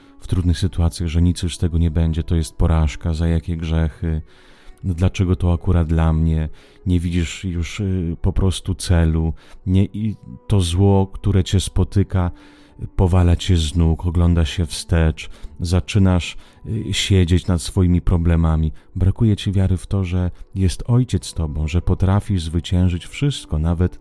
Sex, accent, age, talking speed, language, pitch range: male, Polish, 30-49, 150 wpm, Italian, 80-95 Hz